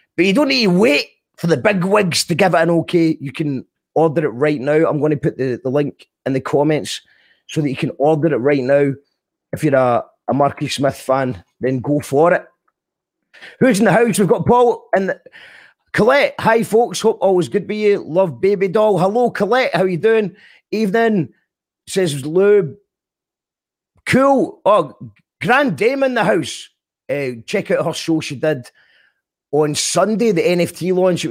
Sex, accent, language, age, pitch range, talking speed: male, British, English, 30-49, 145-195 Hz, 190 wpm